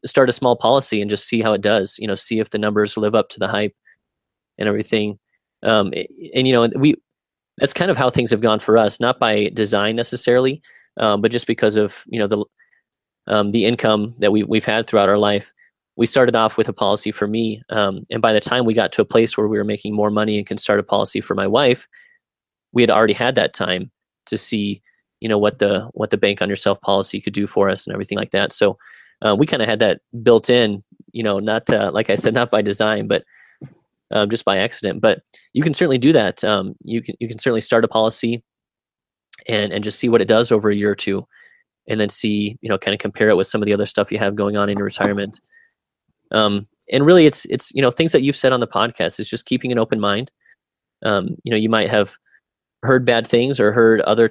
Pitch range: 105-120 Hz